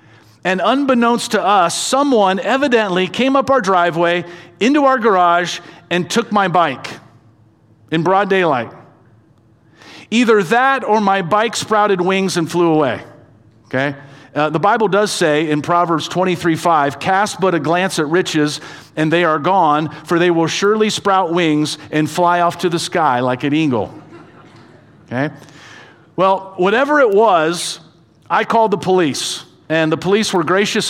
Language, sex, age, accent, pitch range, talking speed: English, male, 50-69, American, 145-195 Hz, 155 wpm